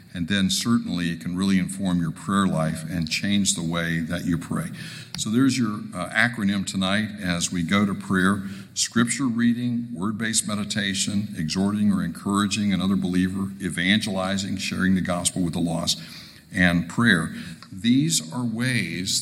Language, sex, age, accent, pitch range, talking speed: English, male, 60-79, American, 85-115 Hz, 155 wpm